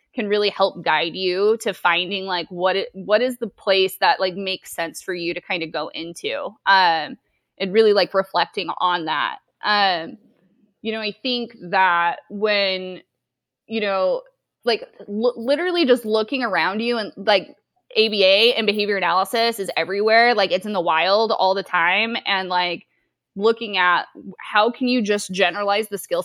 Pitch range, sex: 185-225 Hz, female